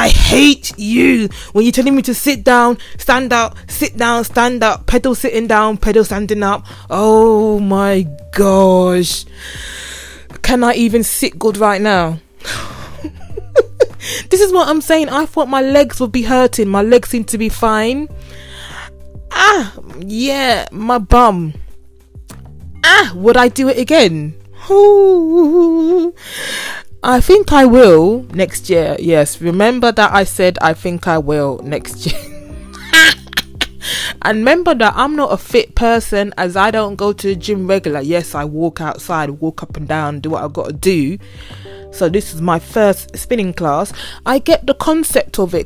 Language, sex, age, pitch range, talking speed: English, female, 20-39, 165-245 Hz, 160 wpm